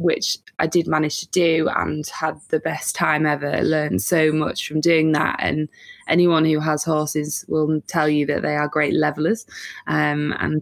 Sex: female